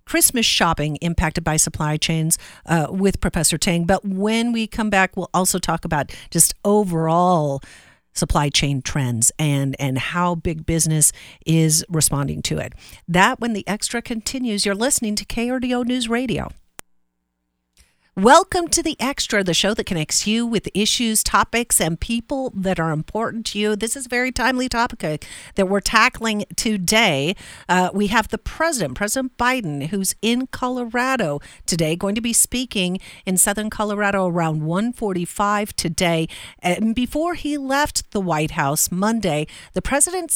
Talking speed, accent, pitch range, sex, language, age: 155 wpm, American, 165-235 Hz, female, English, 50-69